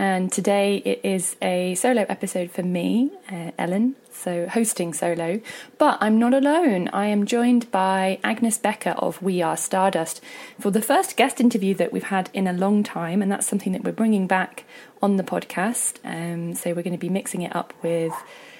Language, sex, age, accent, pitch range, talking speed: English, female, 20-39, British, 180-240 Hz, 195 wpm